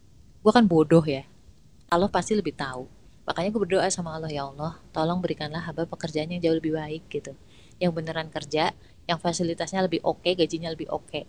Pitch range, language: 160-235 Hz, Indonesian